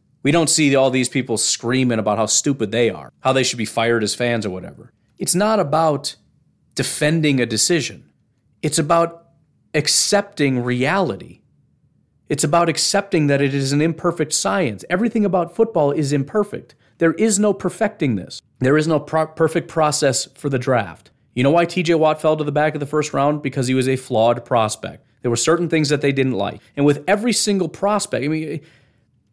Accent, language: American, English